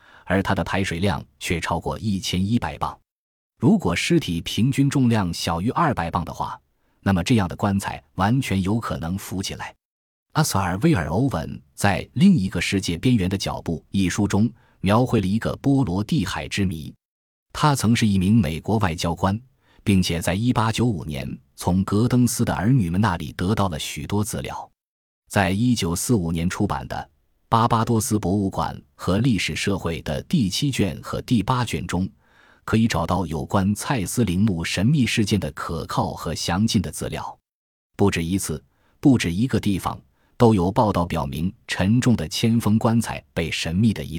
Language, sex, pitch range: Chinese, male, 85-115 Hz